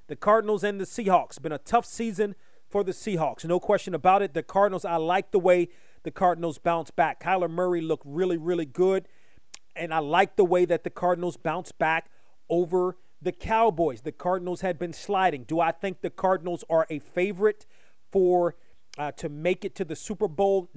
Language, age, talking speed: English, 40-59, 195 wpm